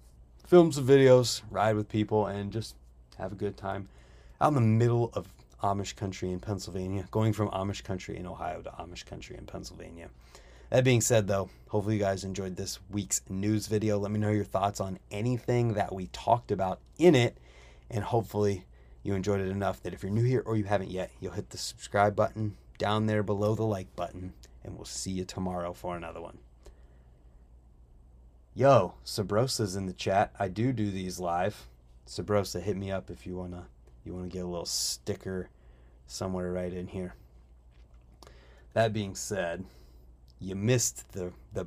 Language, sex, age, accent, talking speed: English, male, 30-49, American, 180 wpm